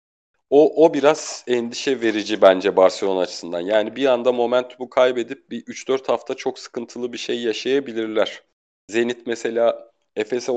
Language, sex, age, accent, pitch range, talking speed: Turkish, male, 40-59, native, 115-175 Hz, 135 wpm